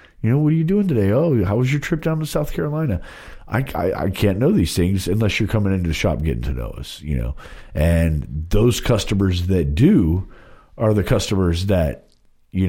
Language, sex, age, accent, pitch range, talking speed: English, male, 40-59, American, 75-100 Hz, 220 wpm